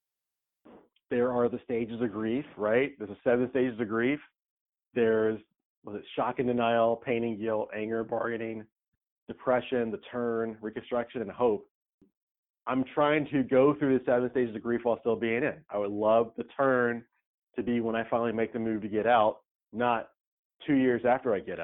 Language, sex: English, male